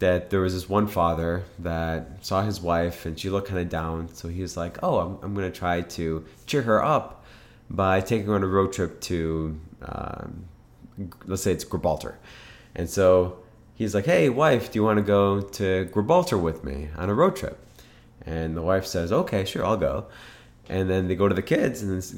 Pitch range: 90-115 Hz